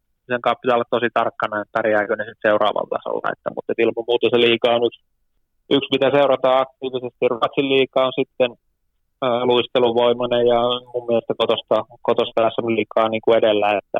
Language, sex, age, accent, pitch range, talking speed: Finnish, male, 20-39, native, 110-130 Hz, 140 wpm